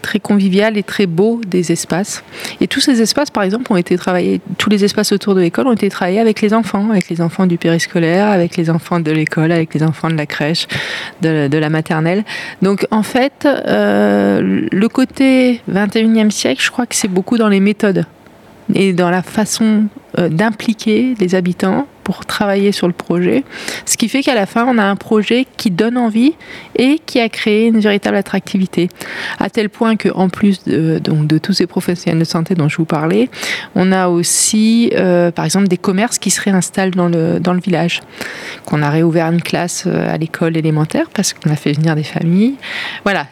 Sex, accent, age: female, French, 30-49